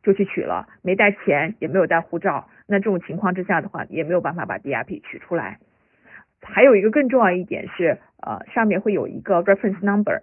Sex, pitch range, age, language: female, 180-215 Hz, 50-69, Chinese